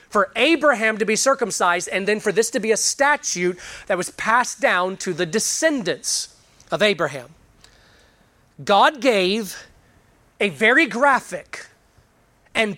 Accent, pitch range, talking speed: American, 190-265 Hz, 130 wpm